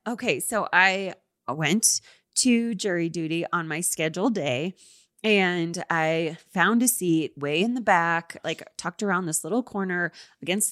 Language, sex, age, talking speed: English, female, 20-39, 150 wpm